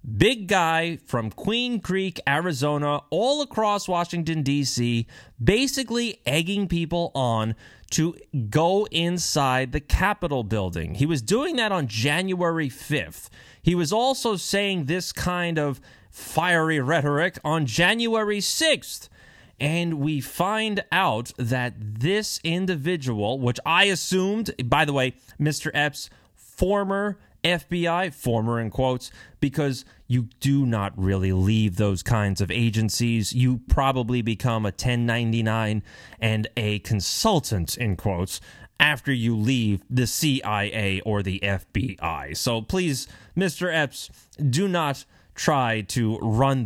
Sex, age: male, 30-49